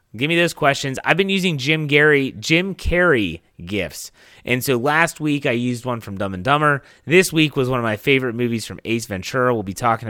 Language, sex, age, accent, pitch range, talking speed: English, male, 30-49, American, 110-150 Hz, 220 wpm